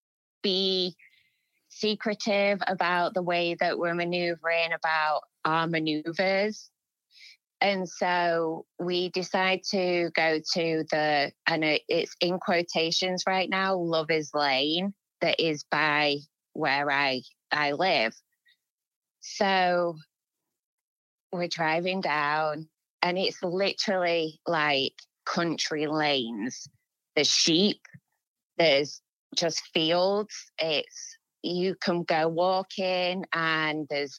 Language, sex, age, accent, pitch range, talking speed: English, female, 20-39, British, 155-190 Hz, 100 wpm